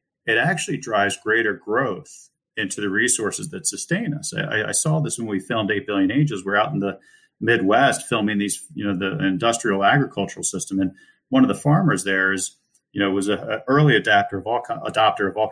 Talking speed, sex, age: 200 wpm, male, 40-59